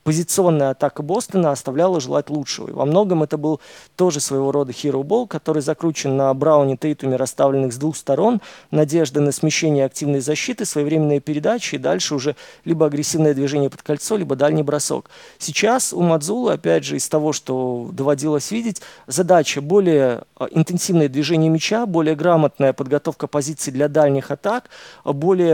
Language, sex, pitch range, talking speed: Russian, male, 140-165 Hz, 155 wpm